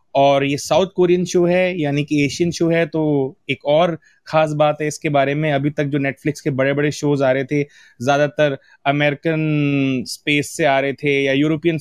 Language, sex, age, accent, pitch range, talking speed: Hindi, male, 30-49, native, 145-175 Hz, 205 wpm